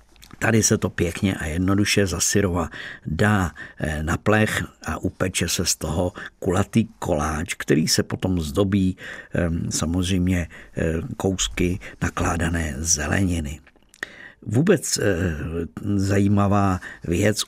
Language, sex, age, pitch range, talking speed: Czech, male, 50-69, 90-110 Hz, 95 wpm